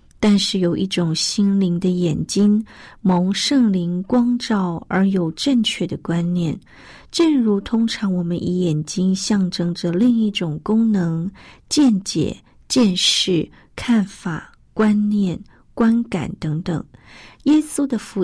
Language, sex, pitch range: Chinese, female, 175-220 Hz